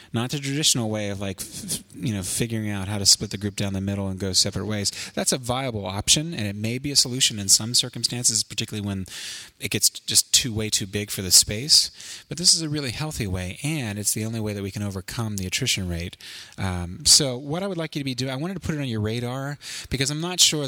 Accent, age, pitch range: American, 30-49, 100-130 Hz